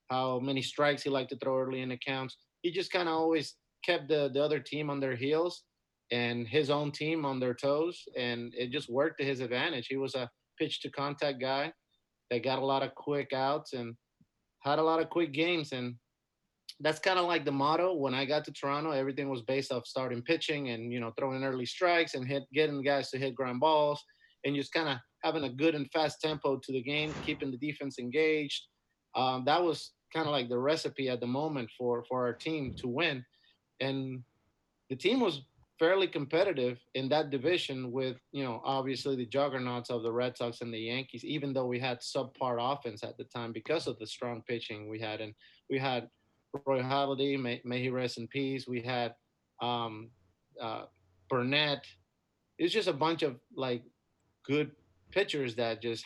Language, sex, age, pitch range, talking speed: English, male, 30-49, 125-150 Hz, 200 wpm